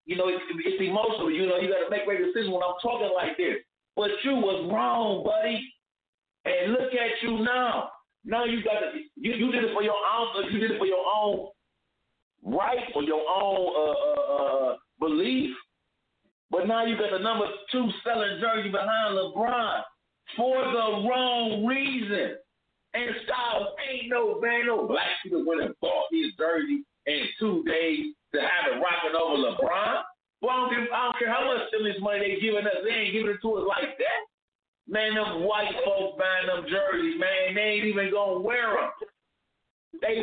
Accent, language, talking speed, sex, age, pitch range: American, English, 190 wpm, male, 50-69, 210-270 Hz